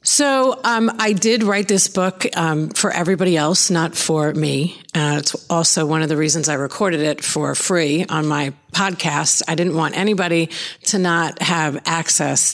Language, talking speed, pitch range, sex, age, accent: English, 175 wpm, 150-185 Hz, female, 40-59, American